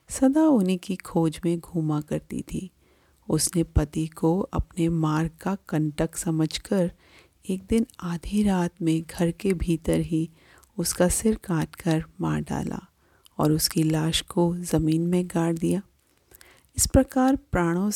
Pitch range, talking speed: 160-185 Hz, 140 wpm